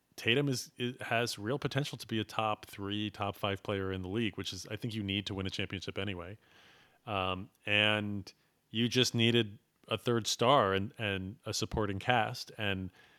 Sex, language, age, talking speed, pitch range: male, English, 30-49, 190 wpm, 95-125 Hz